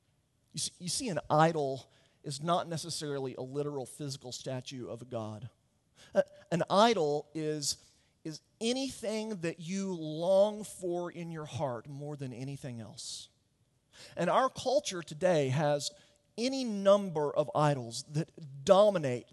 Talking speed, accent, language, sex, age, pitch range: 125 wpm, American, English, male, 40-59, 130-185 Hz